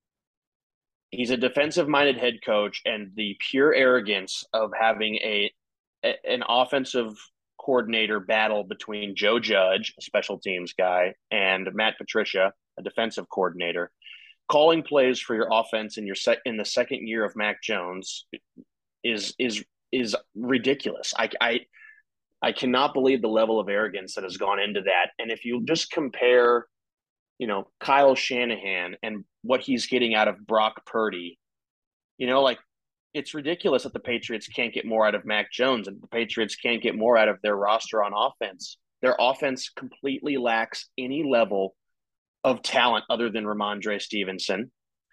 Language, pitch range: English, 105-130 Hz